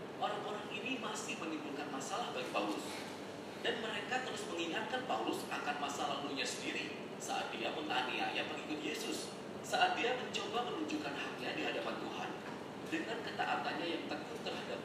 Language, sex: Indonesian, male